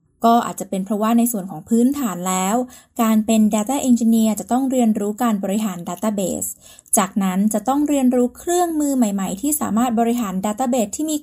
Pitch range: 205-250 Hz